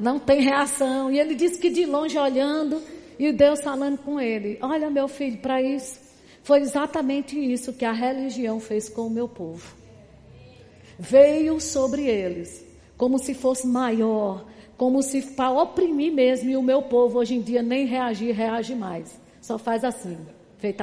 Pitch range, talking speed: 235-290 Hz, 165 wpm